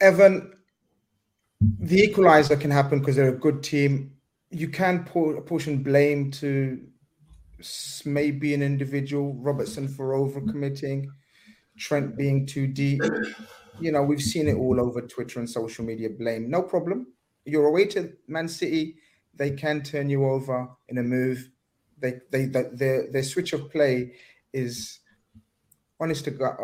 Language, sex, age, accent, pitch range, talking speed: English, male, 30-49, British, 115-145 Hz, 150 wpm